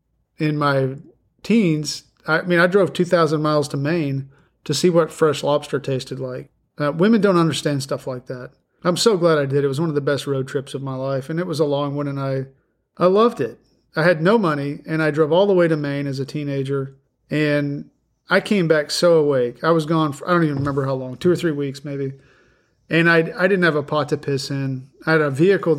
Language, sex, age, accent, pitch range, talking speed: English, male, 40-59, American, 135-160 Hz, 235 wpm